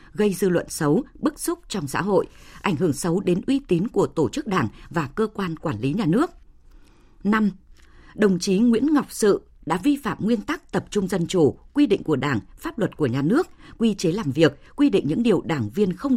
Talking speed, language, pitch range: 225 wpm, Vietnamese, 165-235 Hz